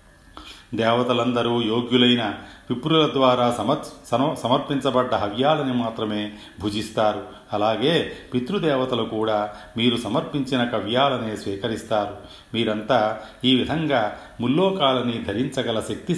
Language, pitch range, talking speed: Telugu, 115-135 Hz, 85 wpm